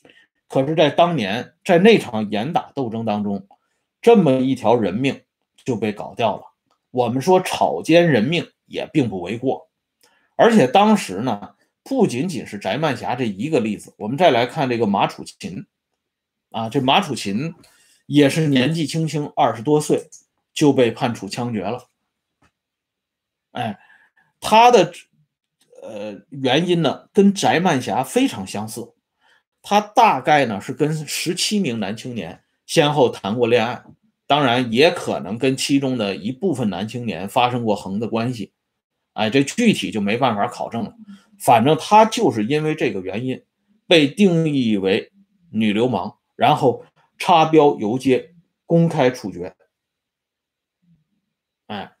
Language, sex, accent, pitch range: Swedish, male, Chinese, 125-190 Hz